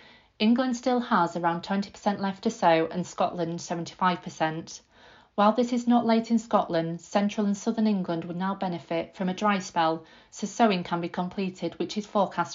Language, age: English, 40-59